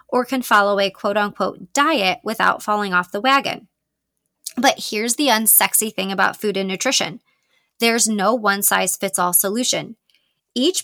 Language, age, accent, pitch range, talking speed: English, 20-39, American, 195-255 Hz, 140 wpm